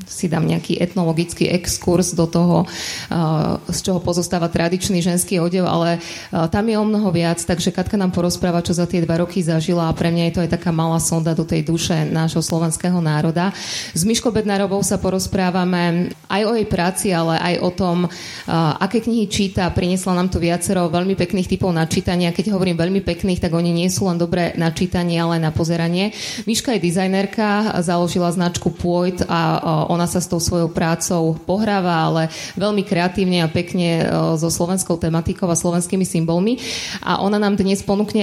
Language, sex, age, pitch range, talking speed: Slovak, female, 20-39, 170-195 Hz, 185 wpm